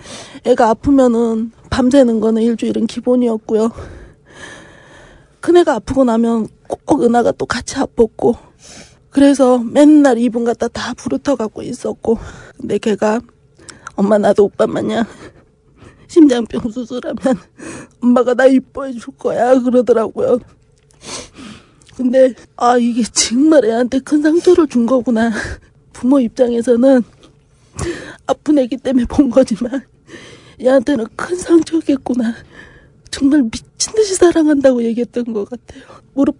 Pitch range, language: 235-285 Hz, Korean